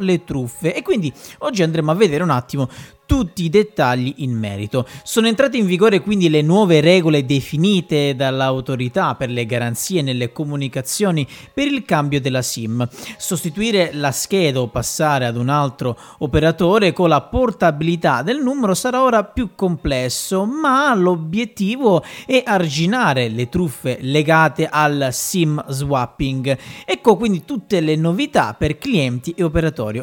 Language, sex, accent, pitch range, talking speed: Italian, male, native, 130-185 Hz, 145 wpm